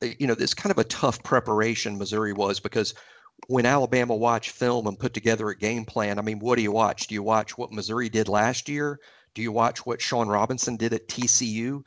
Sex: male